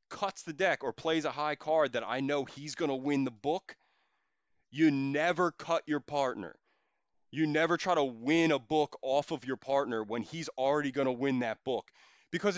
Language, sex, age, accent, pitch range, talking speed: English, male, 20-39, American, 125-155 Hz, 200 wpm